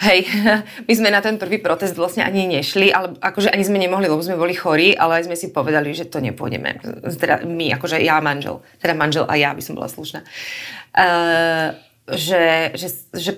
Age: 30-49